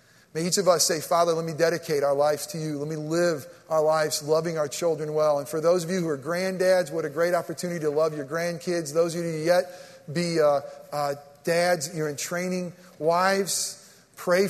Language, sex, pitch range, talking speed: English, male, 170-215 Hz, 215 wpm